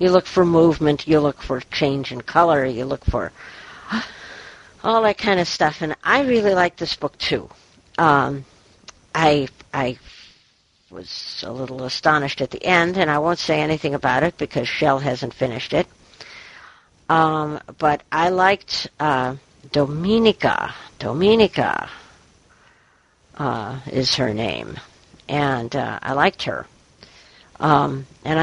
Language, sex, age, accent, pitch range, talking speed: English, female, 60-79, American, 135-170 Hz, 135 wpm